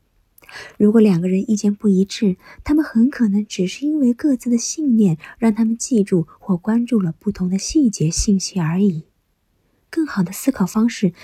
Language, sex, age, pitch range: Chinese, female, 20-39, 180-245 Hz